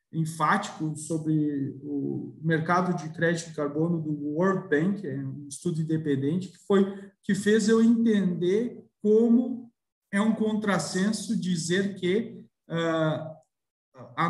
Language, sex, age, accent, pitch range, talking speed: Portuguese, male, 40-59, Brazilian, 170-215 Hz, 110 wpm